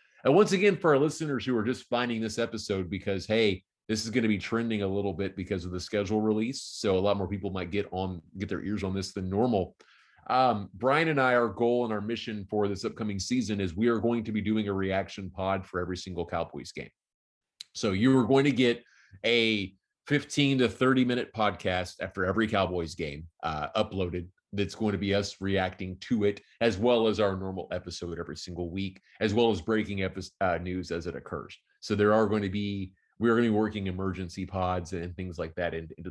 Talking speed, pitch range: 220 wpm, 95-115 Hz